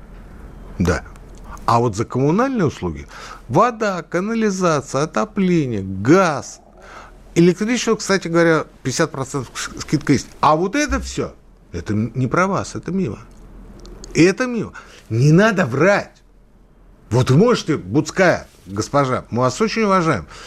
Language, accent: Russian, native